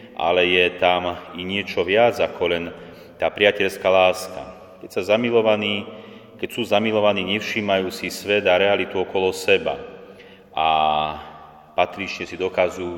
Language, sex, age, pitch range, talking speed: Slovak, male, 30-49, 90-105 Hz, 125 wpm